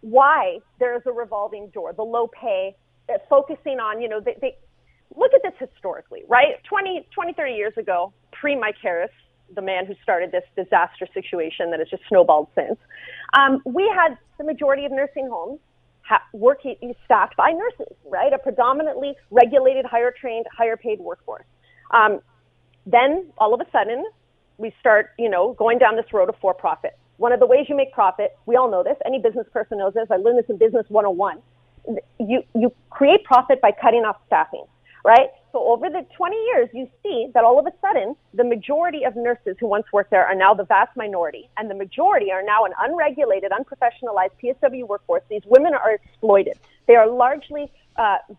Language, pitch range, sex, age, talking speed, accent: English, 215-295 Hz, female, 30-49, 190 wpm, American